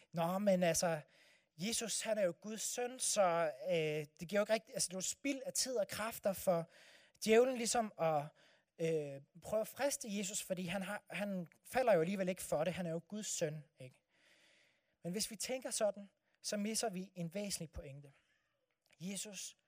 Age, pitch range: 30-49, 165-215 Hz